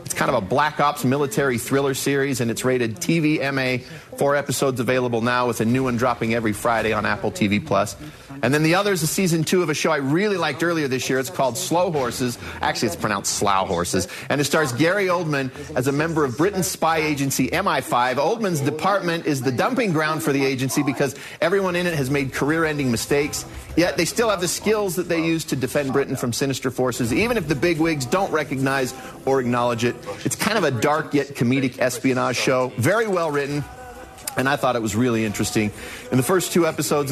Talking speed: 215 wpm